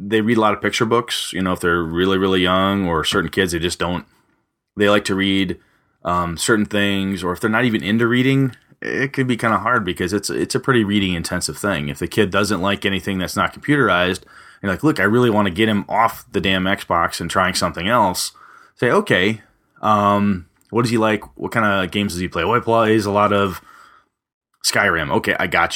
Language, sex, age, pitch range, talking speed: English, male, 30-49, 90-115 Hz, 230 wpm